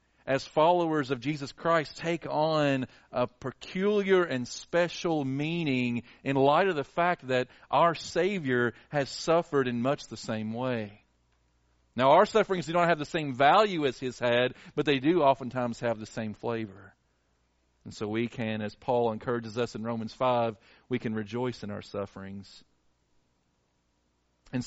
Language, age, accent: English, 40-59, American